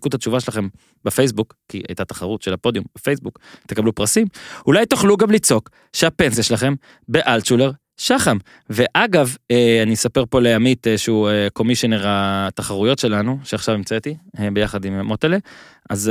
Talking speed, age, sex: 130 wpm, 20-39, male